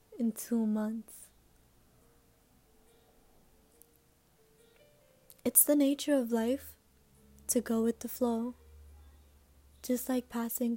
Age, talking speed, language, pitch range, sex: 20-39, 90 wpm, English, 220-245 Hz, female